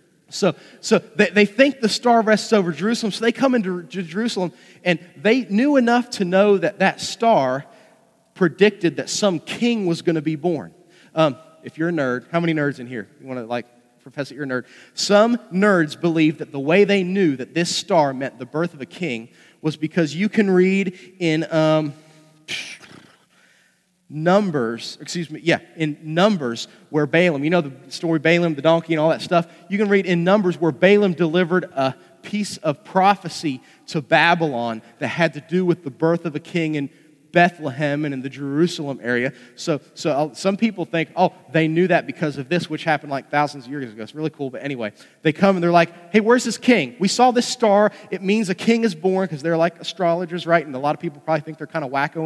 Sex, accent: male, American